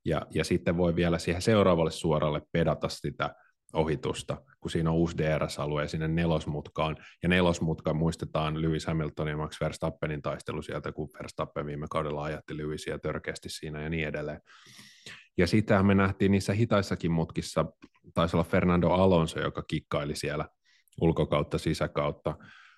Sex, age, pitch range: male, 30-49, 75-90 Hz